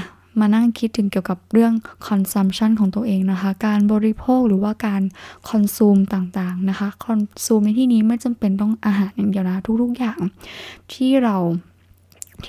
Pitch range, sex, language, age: 190-225 Hz, female, Thai, 10-29